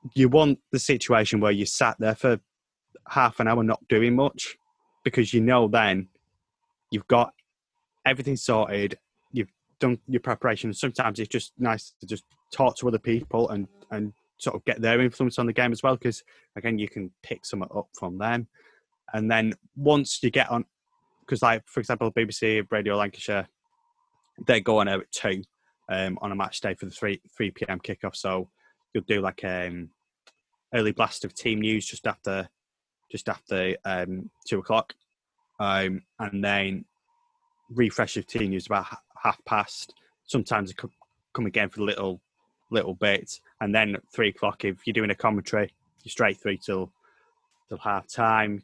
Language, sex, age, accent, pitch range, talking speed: English, male, 20-39, British, 100-130 Hz, 180 wpm